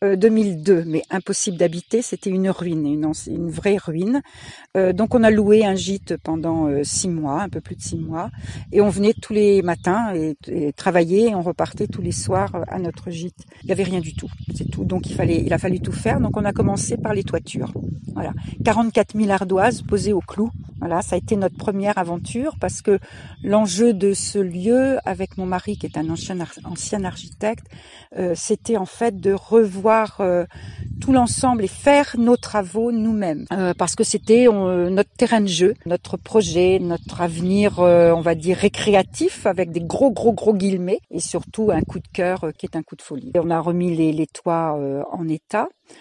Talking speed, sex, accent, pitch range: 205 wpm, female, French, 170-215 Hz